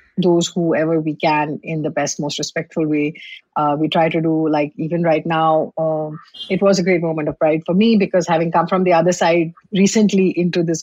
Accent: Indian